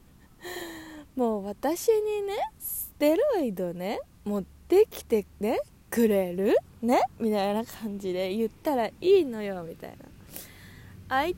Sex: female